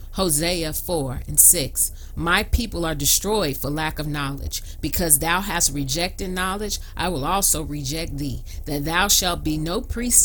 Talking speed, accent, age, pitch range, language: 165 wpm, American, 40-59, 130-185 Hz, English